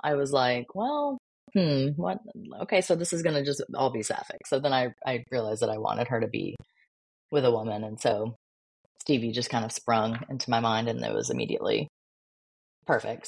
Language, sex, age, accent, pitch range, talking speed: English, female, 20-39, American, 125-160 Hz, 200 wpm